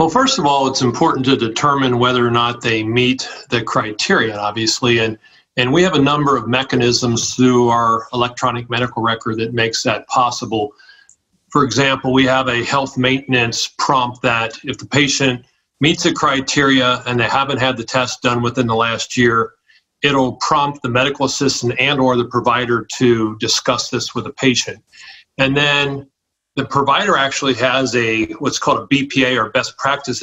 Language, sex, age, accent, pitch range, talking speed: English, male, 40-59, American, 120-140 Hz, 175 wpm